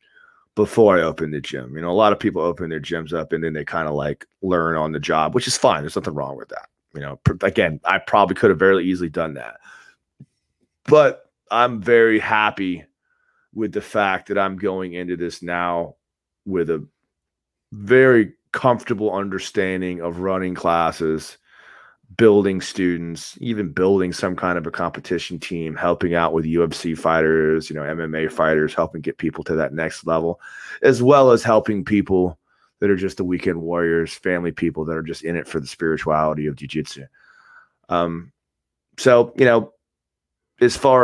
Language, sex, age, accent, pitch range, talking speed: English, male, 30-49, American, 80-110 Hz, 175 wpm